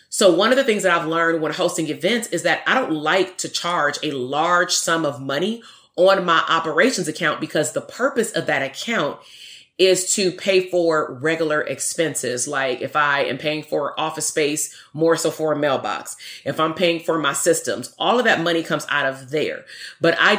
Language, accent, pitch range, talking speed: English, American, 155-185 Hz, 200 wpm